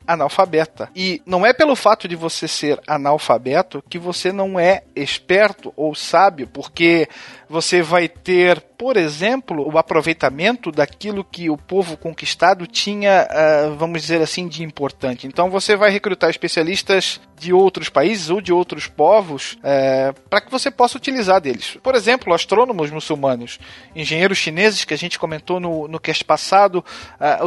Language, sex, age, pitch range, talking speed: Portuguese, male, 40-59, 155-205 Hz, 150 wpm